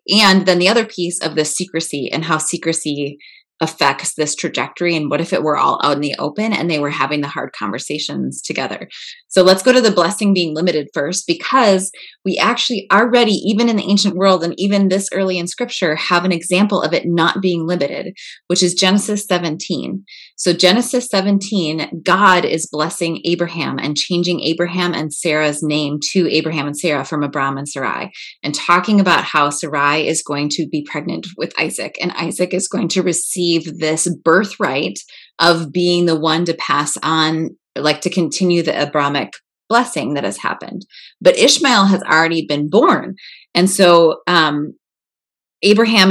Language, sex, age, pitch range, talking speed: English, female, 20-39, 160-200 Hz, 175 wpm